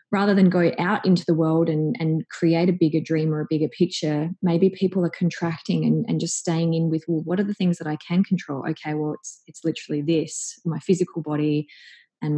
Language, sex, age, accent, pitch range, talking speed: English, female, 20-39, Australian, 160-195 Hz, 225 wpm